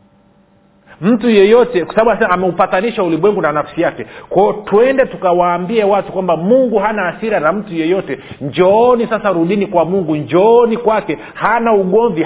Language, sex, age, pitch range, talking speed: Swahili, male, 40-59, 170-220 Hz, 165 wpm